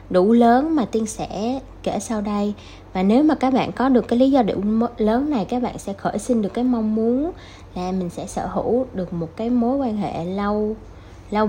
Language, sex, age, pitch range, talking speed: Vietnamese, female, 20-39, 165-240 Hz, 225 wpm